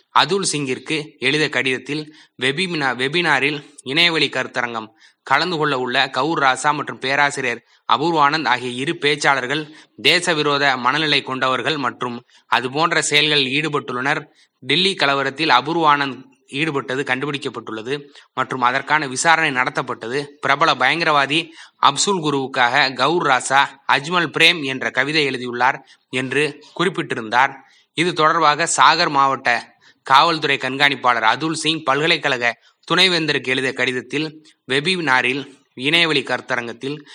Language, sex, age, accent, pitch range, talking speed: Tamil, male, 20-39, native, 130-155 Hz, 100 wpm